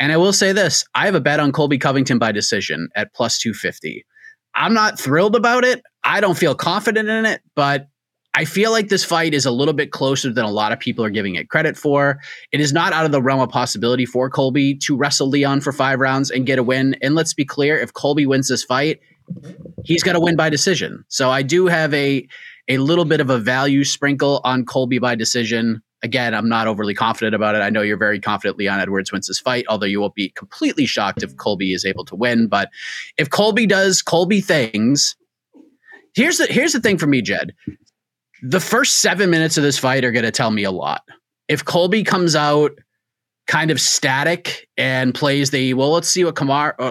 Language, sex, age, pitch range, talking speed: English, male, 30-49, 125-170 Hz, 220 wpm